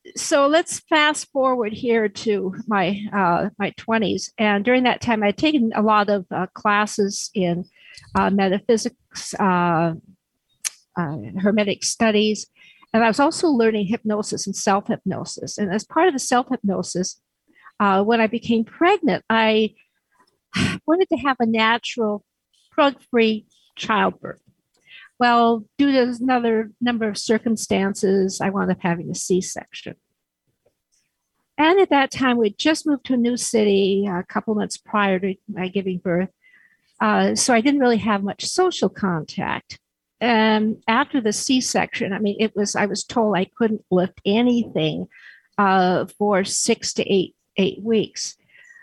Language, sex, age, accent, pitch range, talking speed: English, female, 50-69, American, 200-245 Hz, 150 wpm